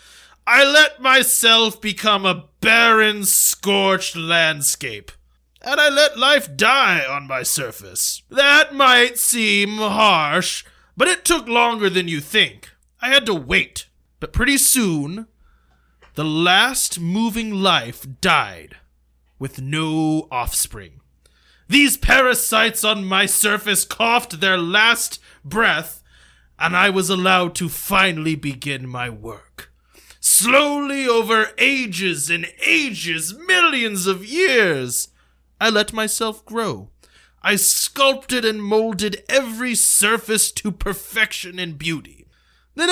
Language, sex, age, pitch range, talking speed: English, male, 20-39, 155-240 Hz, 115 wpm